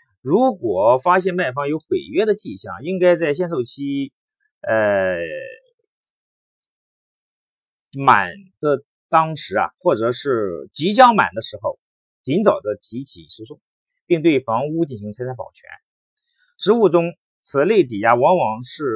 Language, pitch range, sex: Chinese, 125-195 Hz, male